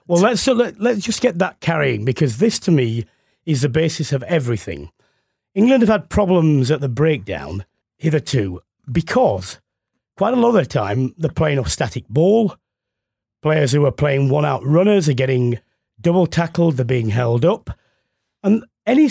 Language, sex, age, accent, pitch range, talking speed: English, male, 40-59, British, 130-180 Hz, 165 wpm